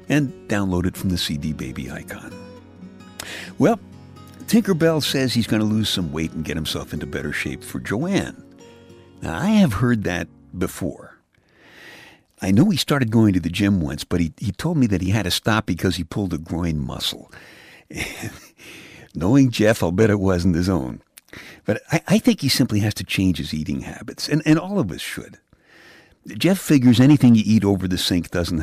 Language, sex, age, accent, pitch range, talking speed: English, male, 60-79, American, 90-140 Hz, 195 wpm